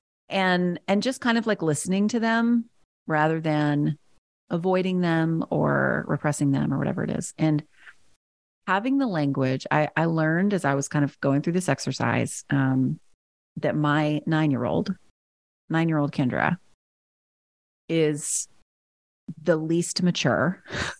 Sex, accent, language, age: female, American, English, 30-49